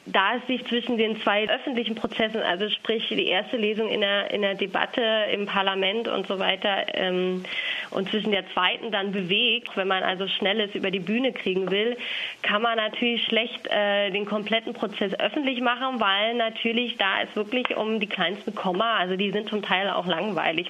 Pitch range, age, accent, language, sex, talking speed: 190-225 Hz, 20-39, German, German, female, 190 wpm